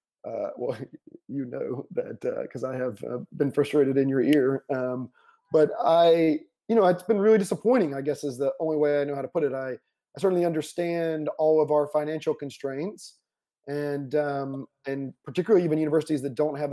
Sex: male